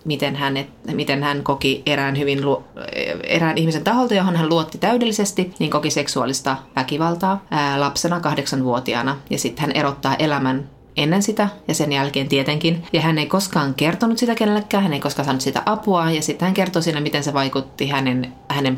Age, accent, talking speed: 30-49, native, 180 wpm